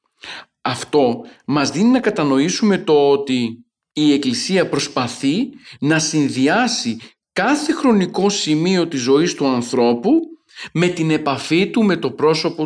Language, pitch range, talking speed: Greek, 145-205 Hz, 125 wpm